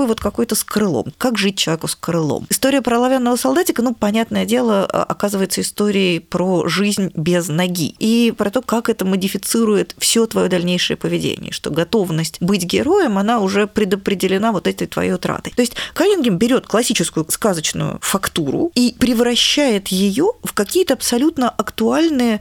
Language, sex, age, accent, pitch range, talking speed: Russian, female, 20-39, native, 185-235 Hz, 155 wpm